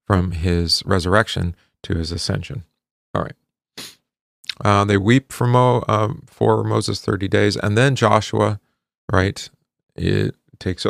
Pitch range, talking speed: 95-115 Hz, 130 wpm